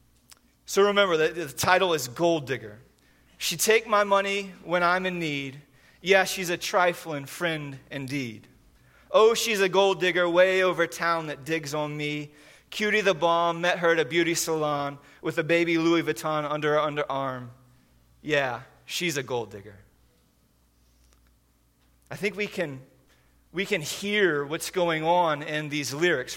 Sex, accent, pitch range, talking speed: male, American, 145-185 Hz, 155 wpm